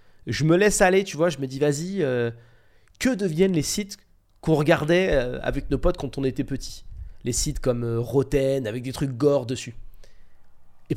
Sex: male